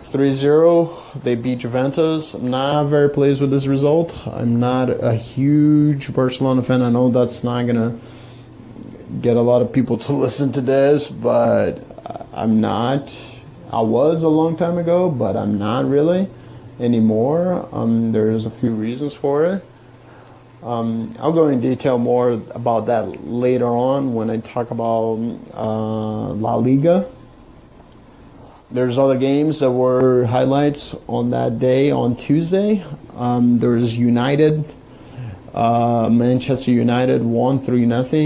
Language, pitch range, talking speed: English, 115-140 Hz, 135 wpm